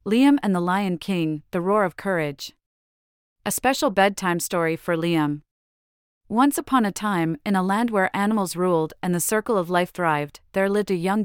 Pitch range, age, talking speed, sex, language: 160-215 Hz, 30-49, 185 wpm, female, English